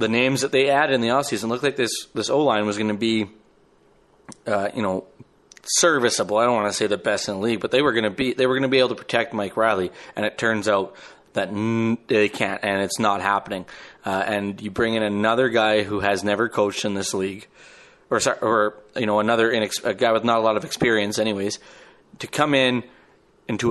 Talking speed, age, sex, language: 240 wpm, 30-49, male, English